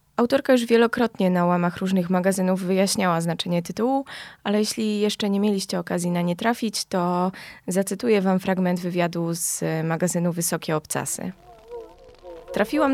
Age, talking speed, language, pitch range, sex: 20-39, 135 wpm, Polish, 175-220 Hz, female